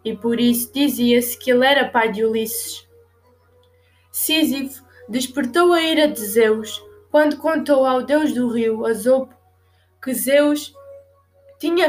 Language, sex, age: Portuguese, female, 20-39